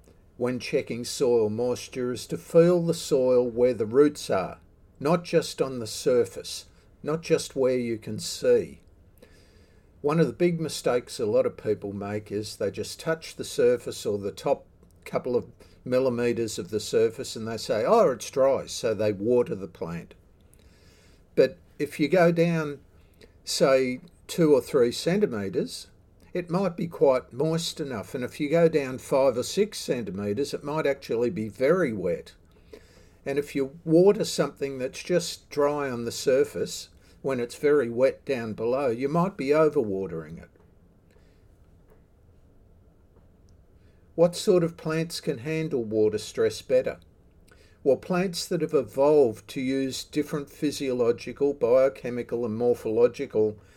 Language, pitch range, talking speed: English, 110-170 Hz, 150 wpm